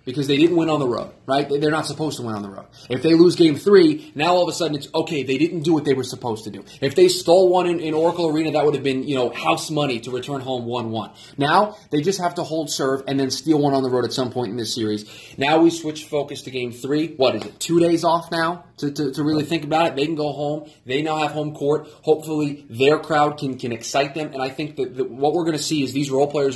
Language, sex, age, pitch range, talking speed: English, male, 20-39, 120-155 Hz, 290 wpm